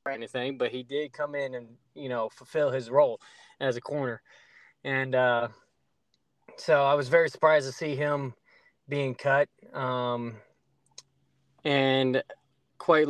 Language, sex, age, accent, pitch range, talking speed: English, male, 20-39, American, 130-155 Hz, 140 wpm